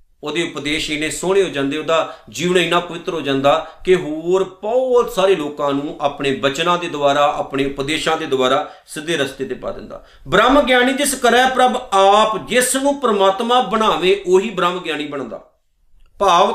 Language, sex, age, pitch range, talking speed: Punjabi, male, 50-69, 140-205 Hz, 165 wpm